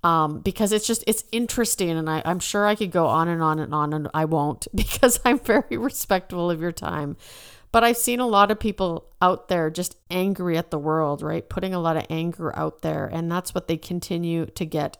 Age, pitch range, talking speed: 50-69, 160-195 Hz, 230 wpm